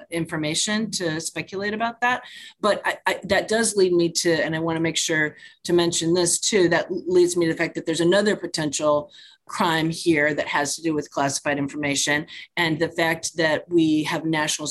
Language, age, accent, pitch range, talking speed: English, 30-49, American, 150-185 Hz, 200 wpm